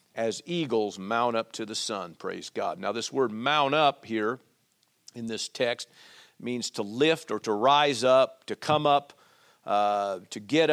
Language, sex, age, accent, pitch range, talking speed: English, male, 50-69, American, 120-155 Hz, 175 wpm